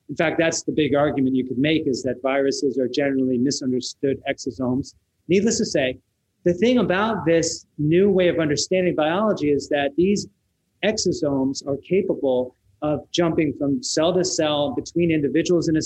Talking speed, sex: 165 wpm, male